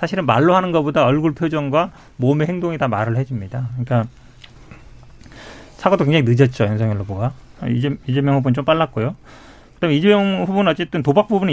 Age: 40-59